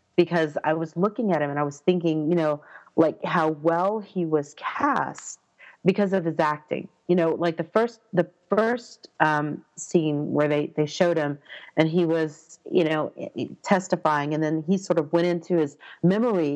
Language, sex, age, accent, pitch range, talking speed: English, female, 40-59, American, 155-195 Hz, 185 wpm